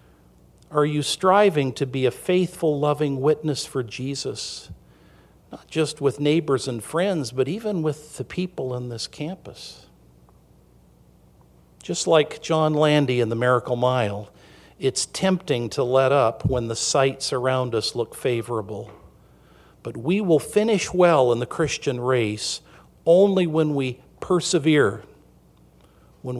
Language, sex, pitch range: English, male, 100-150 Hz